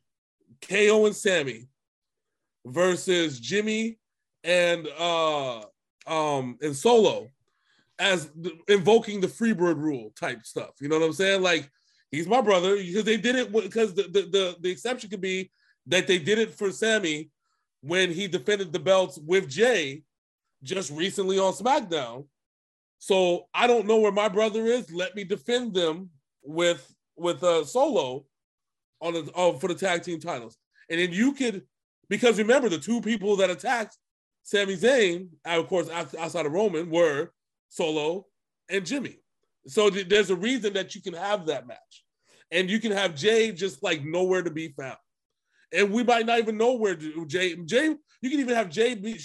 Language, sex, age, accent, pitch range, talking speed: English, male, 20-39, American, 170-220 Hz, 170 wpm